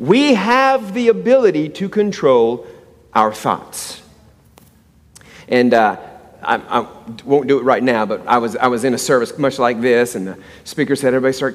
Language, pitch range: English, 135-220 Hz